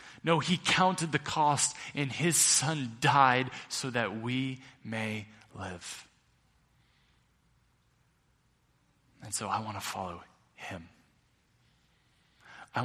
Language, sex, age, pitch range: English, male, 20-39, 115-145 Hz